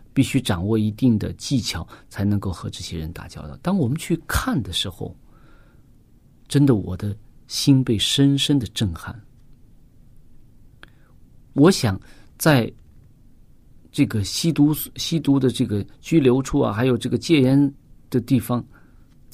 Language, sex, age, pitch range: Chinese, male, 50-69, 115-145 Hz